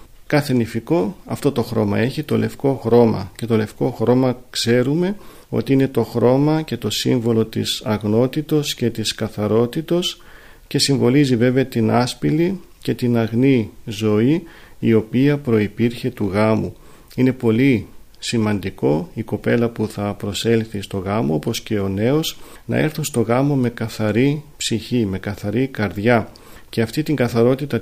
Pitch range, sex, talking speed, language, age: 110-130 Hz, male, 145 wpm, Greek, 40-59